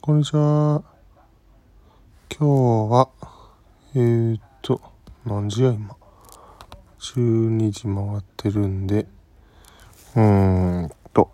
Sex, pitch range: male, 90-110 Hz